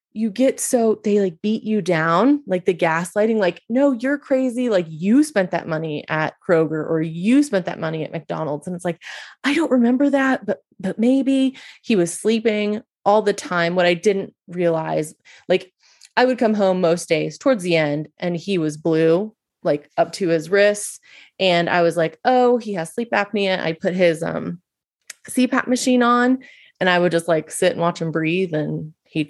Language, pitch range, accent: English, 165-220 Hz, American